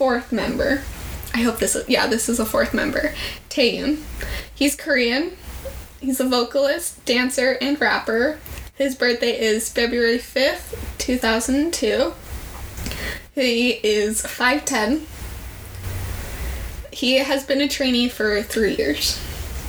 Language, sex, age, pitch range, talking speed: English, female, 10-29, 225-275 Hz, 115 wpm